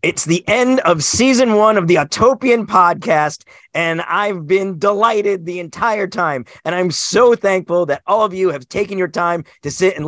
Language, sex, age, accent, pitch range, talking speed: English, male, 40-59, American, 175-220 Hz, 190 wpm